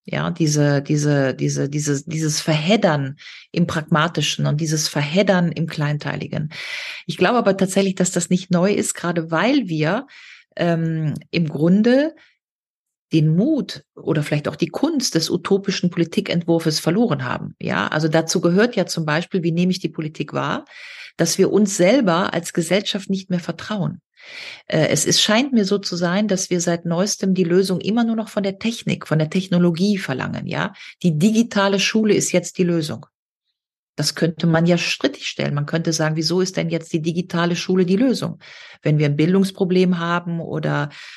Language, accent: German, German